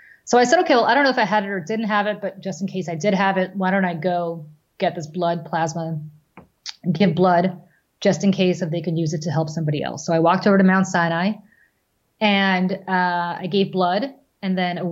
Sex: female